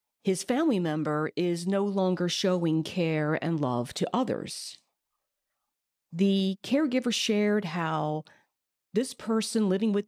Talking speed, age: 120 wpm, 50-69